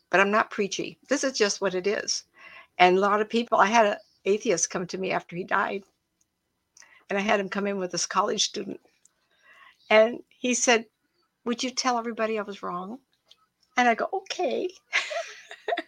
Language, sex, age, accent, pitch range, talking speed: English, female, 60-79, American, 175-225 Hz, 185 wpm